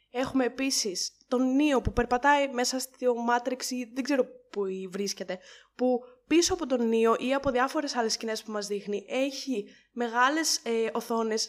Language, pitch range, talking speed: Greek, 215-260 Hz, 155 wpm